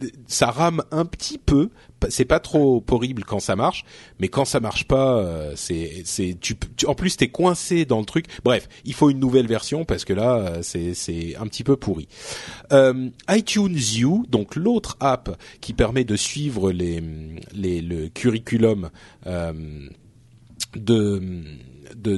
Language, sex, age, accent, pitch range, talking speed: French, male, 40-59, French, 100-140 Hz, 160 wpm